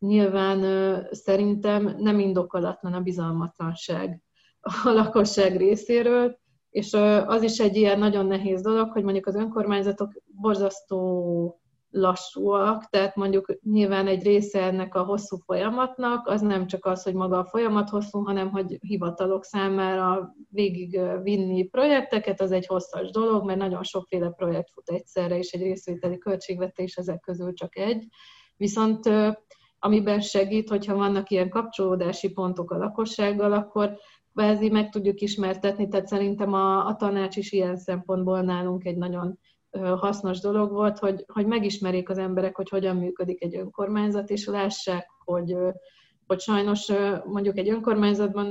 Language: Hungarian